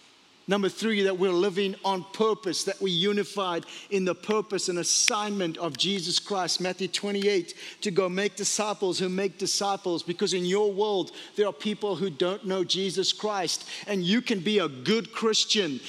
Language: English